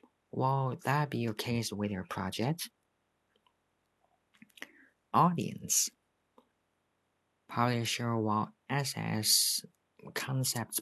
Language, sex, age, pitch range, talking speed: English, male, 40-59, 105-130 Hz, 70 wpm